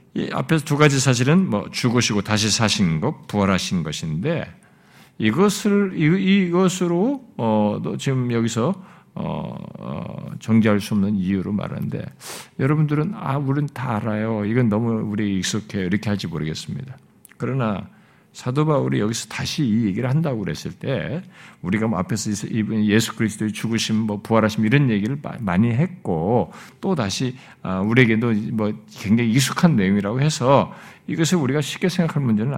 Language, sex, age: Korean, male, 50-69